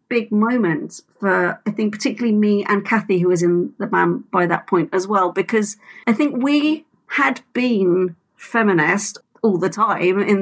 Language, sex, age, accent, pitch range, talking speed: English, female, 40-59, British, 185-245 Hz, 175 wpm